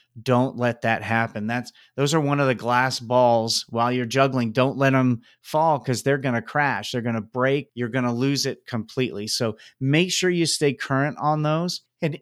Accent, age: American, 30-49